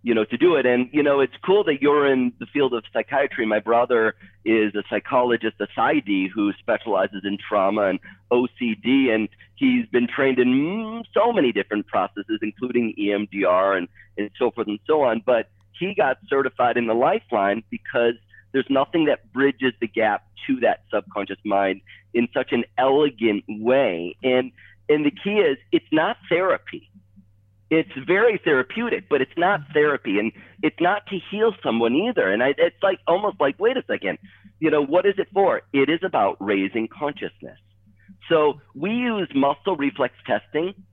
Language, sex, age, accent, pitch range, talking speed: English, male, 40-59, American, 105-165 Hz, 175 wpm